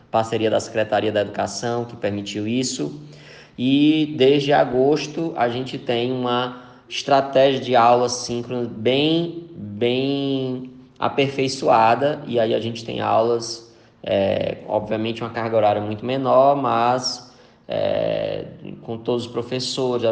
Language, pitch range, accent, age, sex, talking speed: Portuguese, 110-125 Hz, Brazilian, 20-39, male, 115 wpm